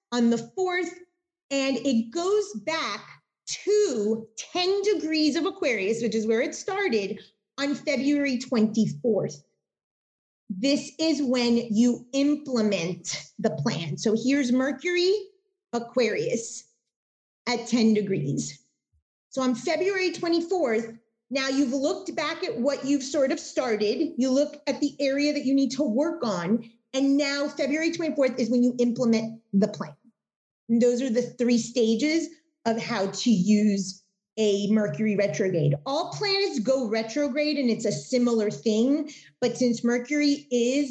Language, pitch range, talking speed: English, 225-290 Hz, 140 wpm